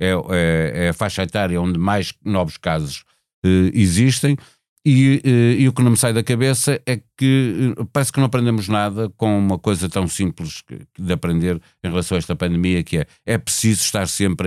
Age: 50-69